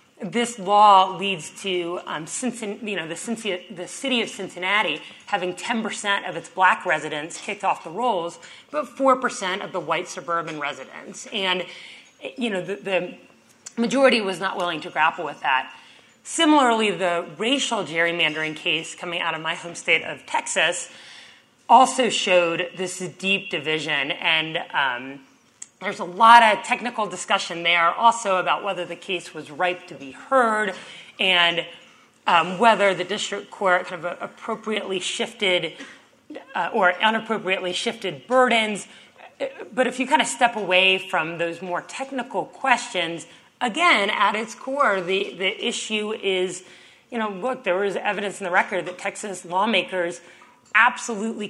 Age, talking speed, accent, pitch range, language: 30-49, 150 wpm, American, 175-230 Hz, English